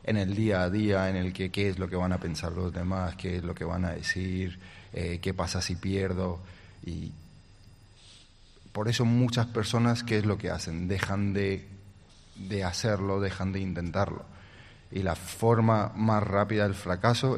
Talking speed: 185 wpm